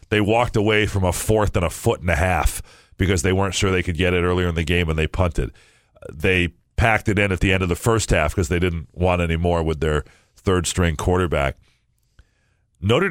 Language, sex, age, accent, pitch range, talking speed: English, male, 40-59, American, 90-110 Hz, 225 wpm